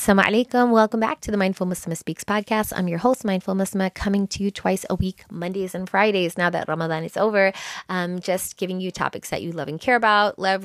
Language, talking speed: English, 230 wpm